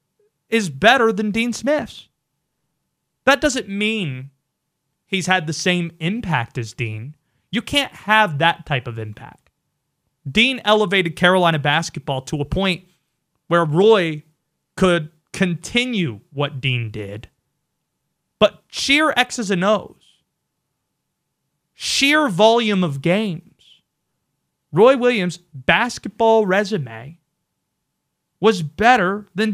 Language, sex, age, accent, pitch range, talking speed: English, male, 30-49, American, 150-225 Hz, 105 wpm